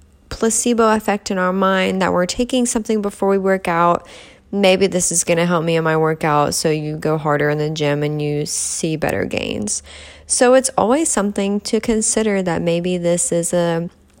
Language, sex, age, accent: English, female, 20-39, American